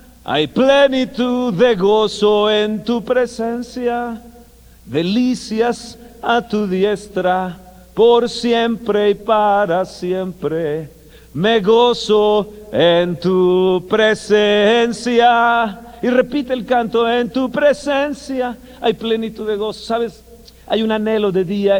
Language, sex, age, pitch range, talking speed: Spanish, male, 50-69, 195-235 Hz, 105 wpm